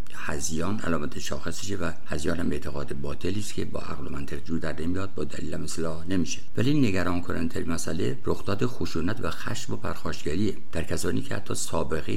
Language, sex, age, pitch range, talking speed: Persian, male, 60-79, 80-100 Hz, 180 wpm